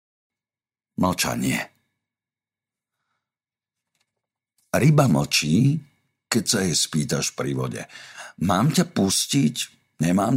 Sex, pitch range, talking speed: male, 80-125 Hz, 75 wpm